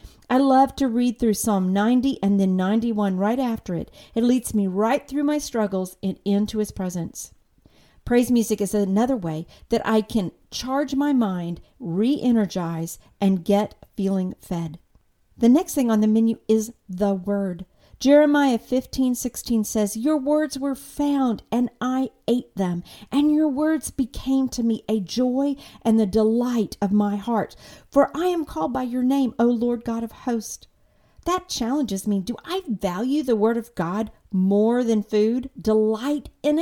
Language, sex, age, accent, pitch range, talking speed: English, female, 50-69, American, 200-260 Hz, 165 wpm